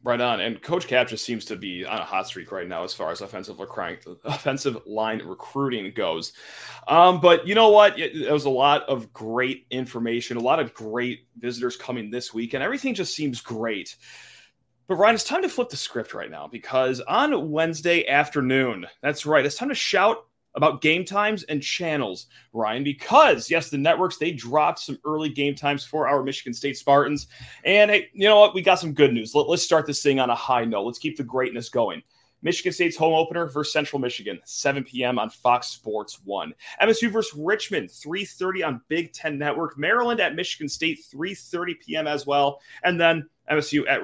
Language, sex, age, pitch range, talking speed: English, male, 30-49, 125-170 Hz, 200 wpm